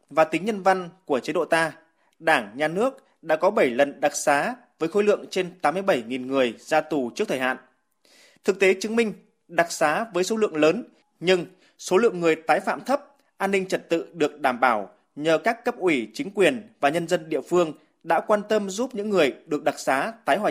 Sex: male